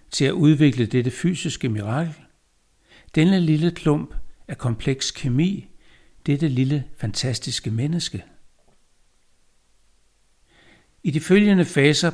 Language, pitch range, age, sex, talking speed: Danish, 120-155 Hz, 60-79, male, 100 wpm